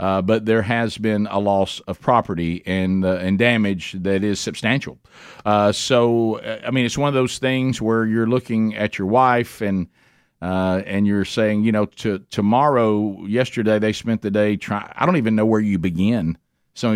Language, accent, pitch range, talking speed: English, American, 95-120 Hz, 190 wpm